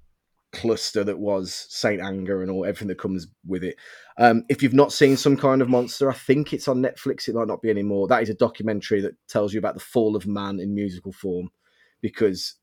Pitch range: 100-130 Hz